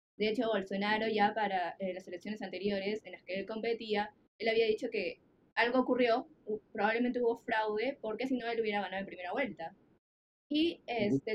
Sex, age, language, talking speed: female, 10-29, Spanish, 180 wpm